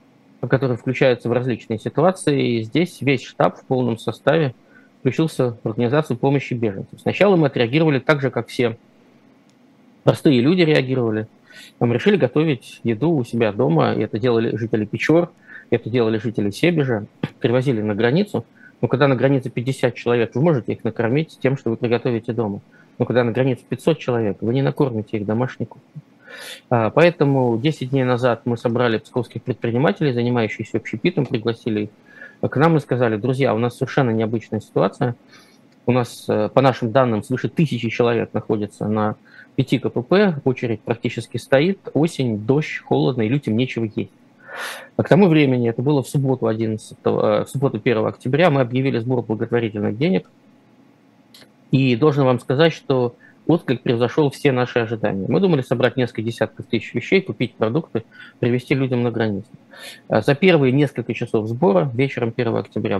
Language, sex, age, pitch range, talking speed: Russian, male, 20-39, 115-145 Hz, 160 wpm